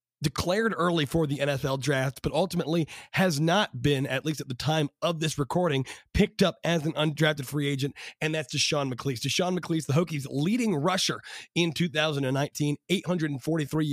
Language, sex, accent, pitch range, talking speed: English, male, American, 140-175 Hz, 170 wpm